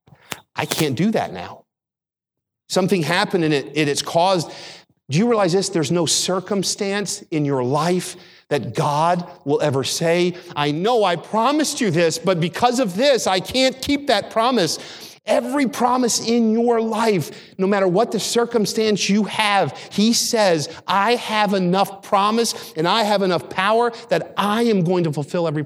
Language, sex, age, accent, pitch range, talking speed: English, male, 50-69, American, 135-200 Hz, 165 wpm